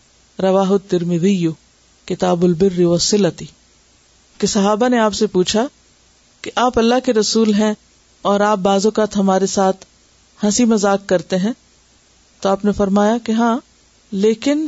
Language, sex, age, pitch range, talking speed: Urdu, female, 50-69, 180-230 Hz, 130 wpm